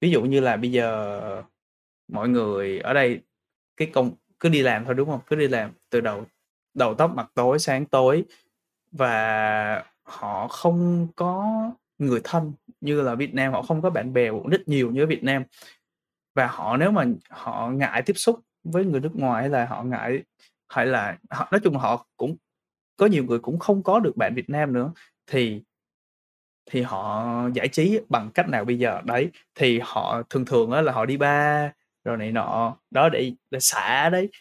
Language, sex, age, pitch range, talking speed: Vietnamese, male, 20-39, 120-165 Hz, 195 wpm